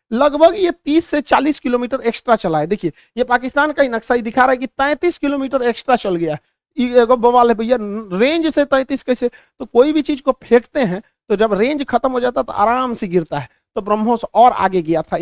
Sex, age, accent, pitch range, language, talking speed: male, 50-69, native, 200-265 Hz, Hindi, 215 wpm